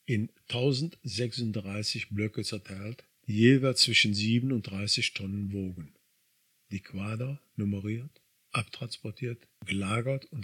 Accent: German